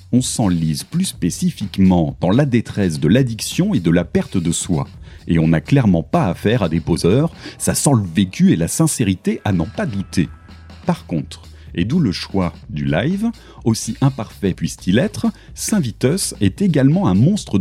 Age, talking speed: 40-59, 175 wpm